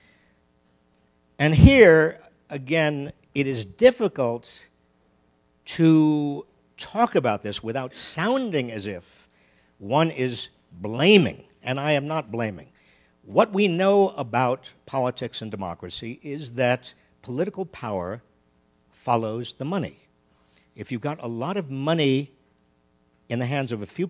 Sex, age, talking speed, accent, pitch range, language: male, 50-69, 120 wpm, American, 95-160 Hz, English